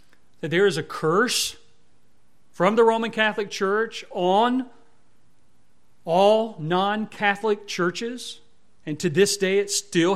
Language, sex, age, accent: English, male, 40-59, American